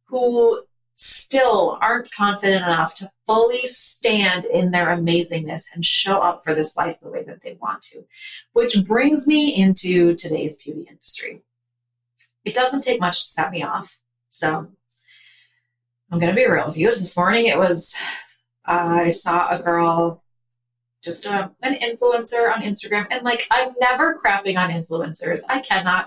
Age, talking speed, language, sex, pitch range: 30-49, 160 wpm, English, female, 160-230 Hz